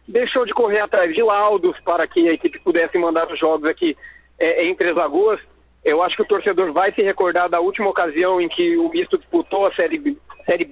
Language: Portuguese